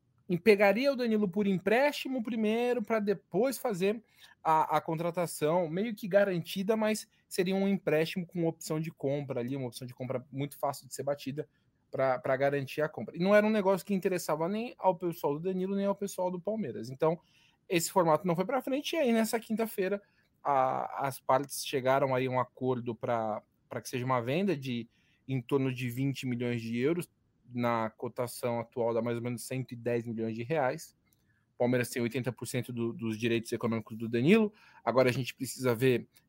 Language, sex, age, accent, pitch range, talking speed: Portuguese, male, 20-39, Brazilian, 125-185 Hz, 180 wpm